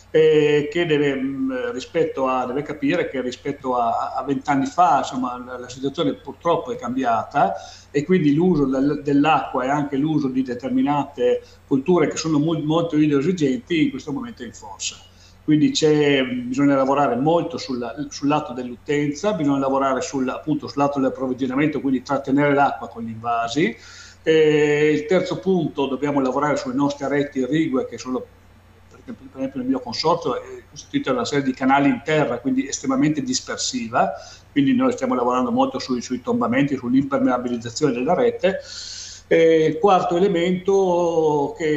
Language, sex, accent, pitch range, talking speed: Italian, male, native, 130-165 Hz, 150 wpm